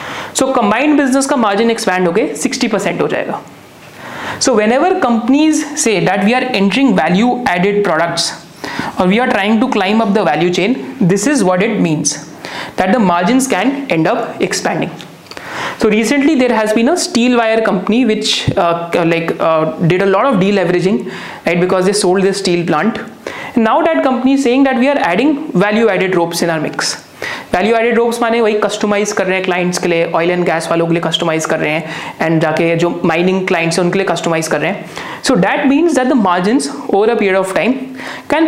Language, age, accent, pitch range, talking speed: Hindi, 30-49, native, 180-245 Hz, 190 wpm